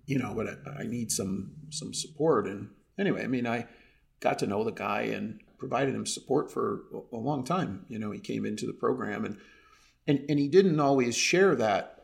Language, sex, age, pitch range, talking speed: English, male, 40-59, 110-155 Hz, 205 wpm